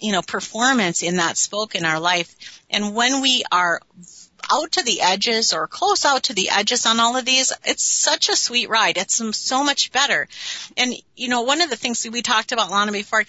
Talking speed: 225 wpm